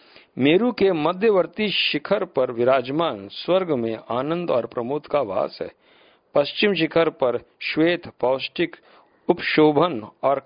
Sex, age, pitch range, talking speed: male, 50-69, 120-170 Hz, 120 wpm